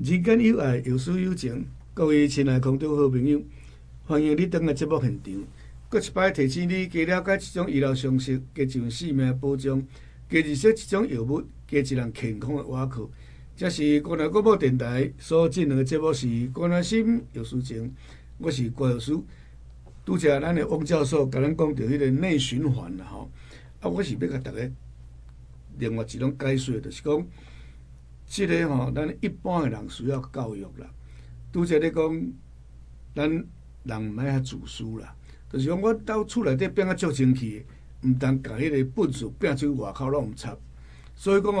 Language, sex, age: Chinese, male, 60-79